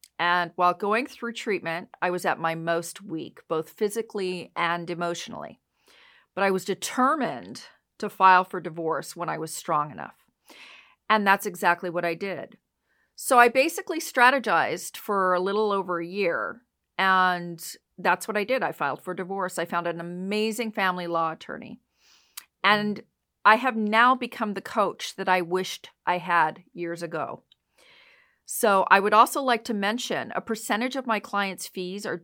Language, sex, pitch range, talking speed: English, female, 175-230 Hz, 165 wpm